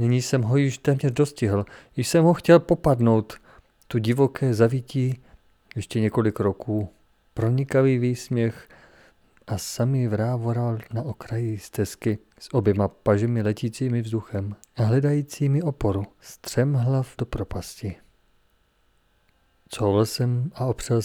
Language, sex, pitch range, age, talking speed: Czech, male, 105-120 Hz, 40-59, 115 wpm